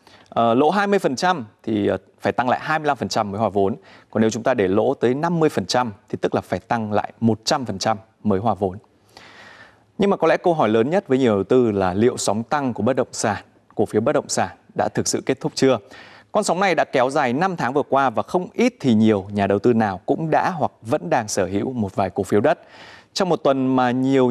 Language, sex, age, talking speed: Vietnamese, male, 20-39, 235 wpm